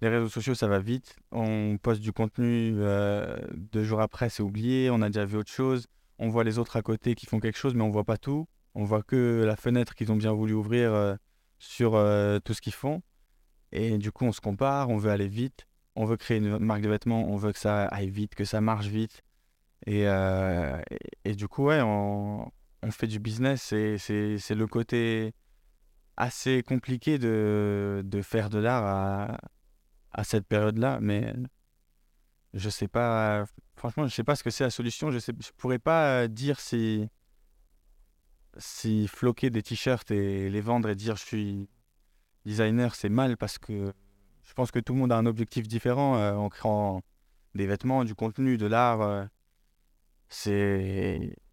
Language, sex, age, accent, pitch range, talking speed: French, male, 20-39, French, 105-120 Hz, 195 wpm